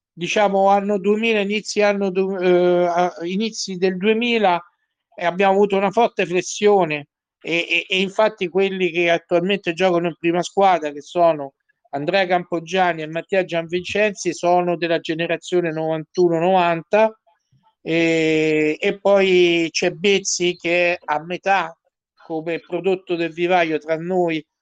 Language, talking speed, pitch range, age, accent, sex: Italian, 125 wpm, 170-195 Hz, 50-69, native, male